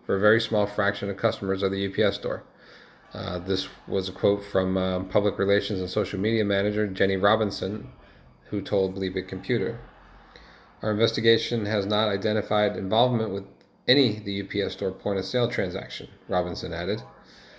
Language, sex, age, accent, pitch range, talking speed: English, male, 40-59, American, 95-110 Hz, 160 wpm